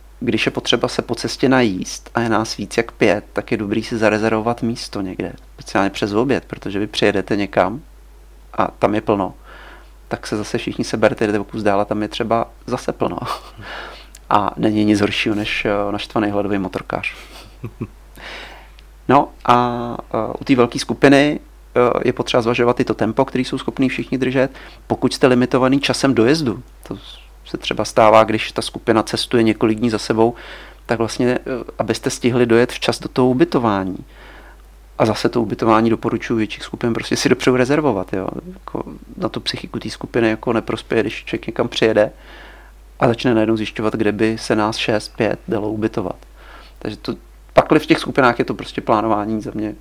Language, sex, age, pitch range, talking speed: Czech, male, 40-59, 105-120 Hz, 175 wpm